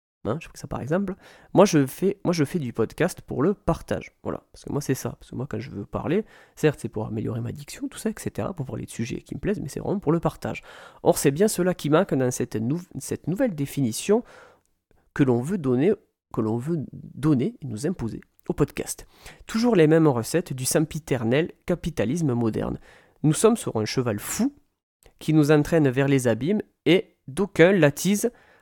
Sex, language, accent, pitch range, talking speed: male, French, French, 125-175 Hz, 210 wpm